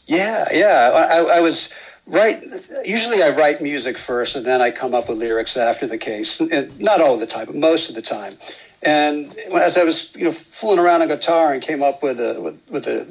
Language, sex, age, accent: English, male, 60-79, American